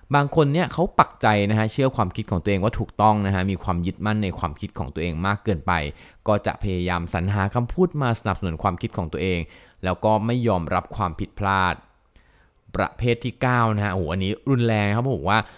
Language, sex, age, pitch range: Thai, male, 20-39, 90-120 Hz